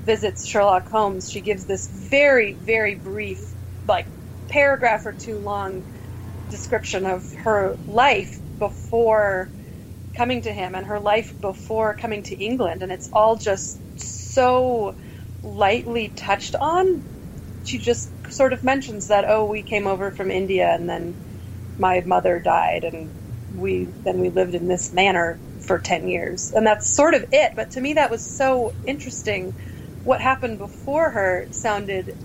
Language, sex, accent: English, female, American